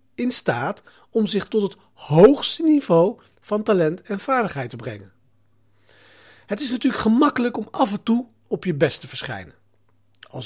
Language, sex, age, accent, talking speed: Dutch, male, 40-59, Dutch, 160 wpm